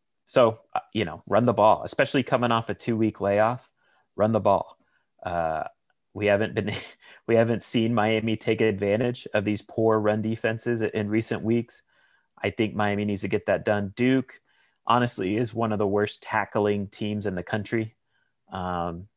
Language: English